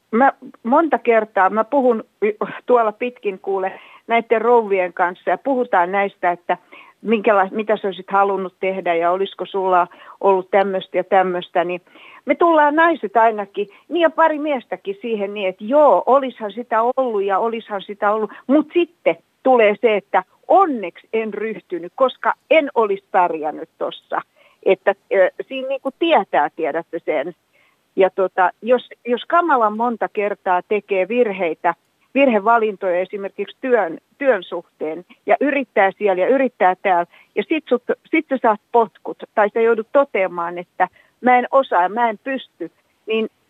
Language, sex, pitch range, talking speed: Finnish, female, 190-255 Hz, 150 wpm